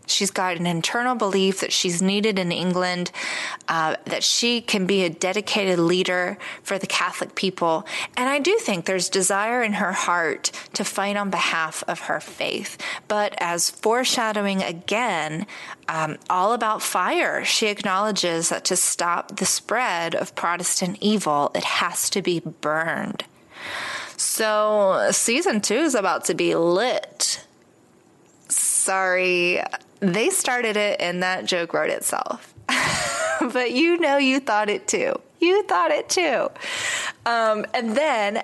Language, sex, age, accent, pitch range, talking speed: English, female, 30-49, American, 180-235 Hz, 145 wpm